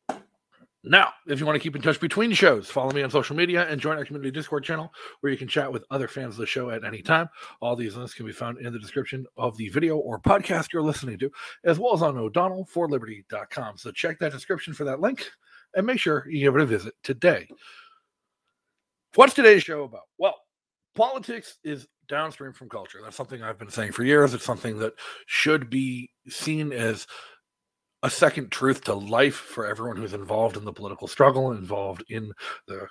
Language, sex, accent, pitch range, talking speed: English, male, American, 120-165 Hz, 205 wpm